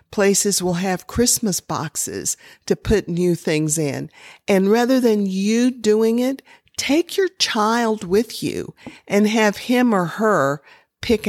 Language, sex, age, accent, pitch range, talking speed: English, female, 50-69, American, 160-220 Hz, 145 wpm